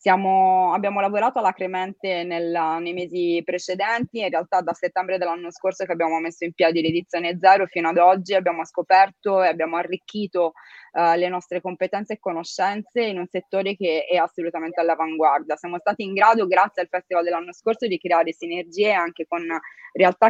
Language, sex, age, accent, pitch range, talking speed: Italian, female, 20-39, native, 165-185 Hz, 170 wpm